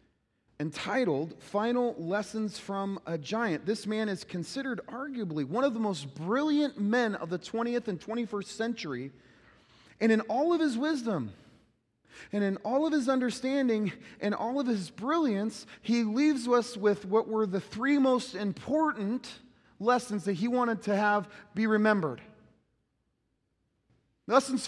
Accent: American